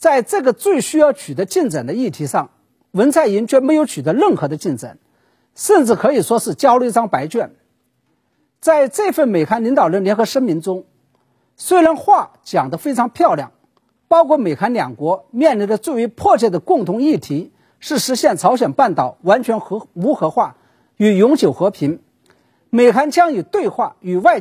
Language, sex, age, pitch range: Chinese, male, 50-69, 210-320 Hz